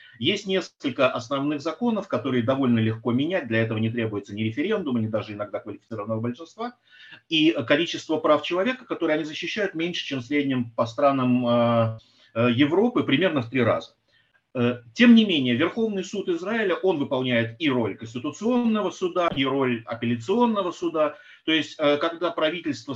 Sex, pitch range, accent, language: male, 115-180 Hz, native, Russian